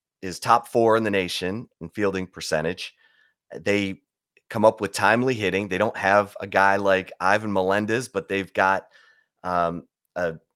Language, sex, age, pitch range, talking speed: English, male, 30-49, 90-105 Hz, 160 wpm